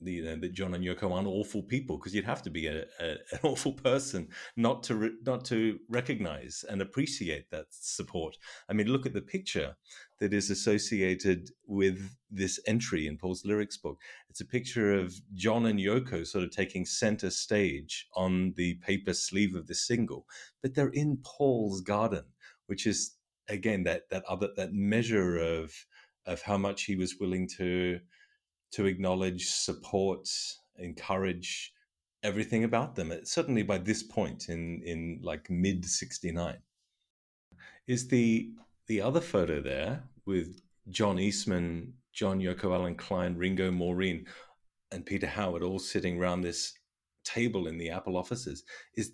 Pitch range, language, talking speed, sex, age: 90-115 Hz, English, 160 wpm, male, 30-49